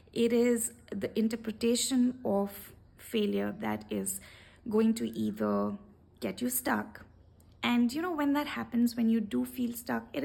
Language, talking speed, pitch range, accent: English, 150 wpm, 200-240 Hz, Indian